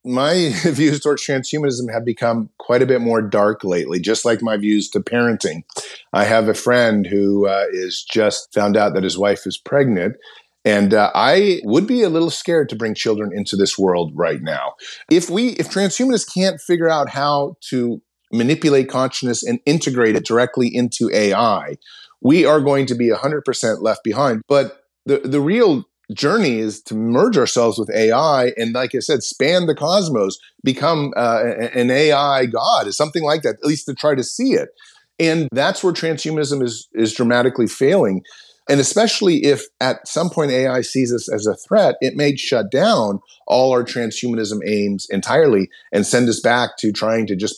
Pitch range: 110-145 Hz